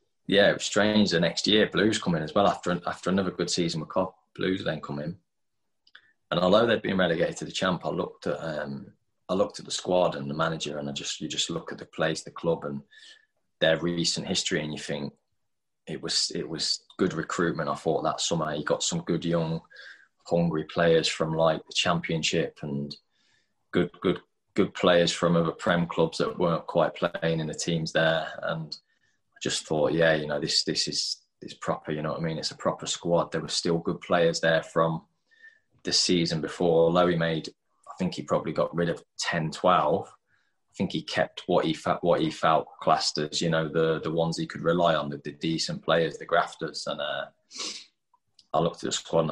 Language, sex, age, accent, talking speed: English, male, 20-39, British, 215 wpm